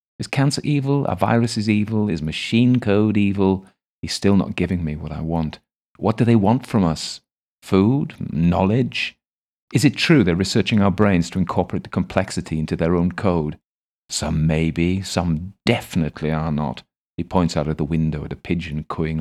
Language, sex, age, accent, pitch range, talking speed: English, male, 40-59, British, 80-105 Hz, 180 wpm